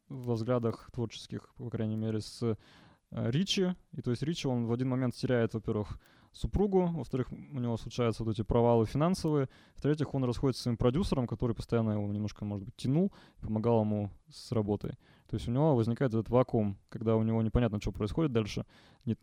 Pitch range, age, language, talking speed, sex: 110-130 Hz, 20-39, Russian, 185 wpm, male